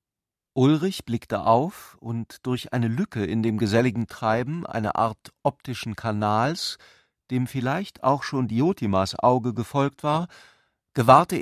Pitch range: 110-135 Hz